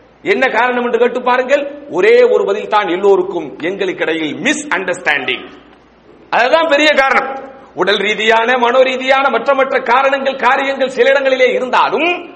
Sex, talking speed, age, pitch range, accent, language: male, 125 wpm, 50-69, 255-305 Hz, Indian, English